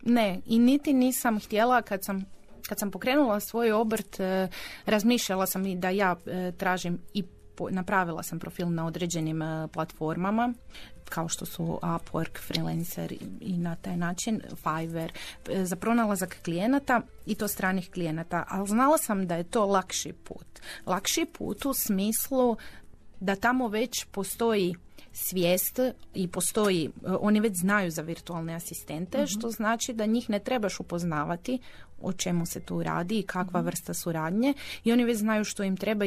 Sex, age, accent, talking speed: female, 30-49, native, 160 wpm